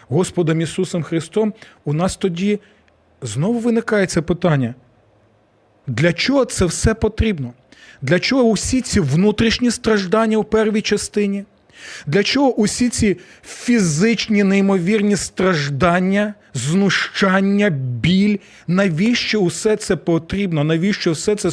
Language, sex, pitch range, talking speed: Ukrainian, male, 130-200 Hz, 110 wpm